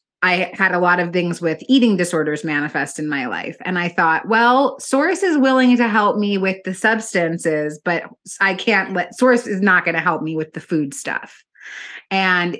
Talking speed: 200 wpm